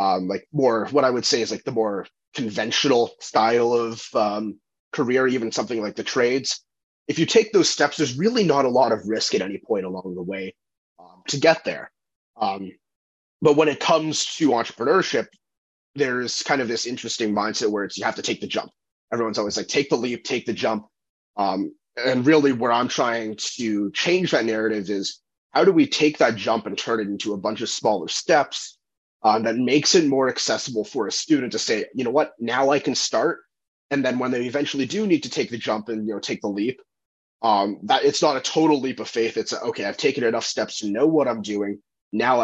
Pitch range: 110-145 Hz